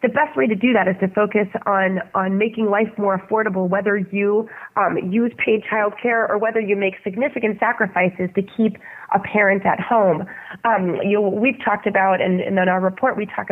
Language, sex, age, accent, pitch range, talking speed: English, female, 30-49, American, 185-220 Hz, 205 wpm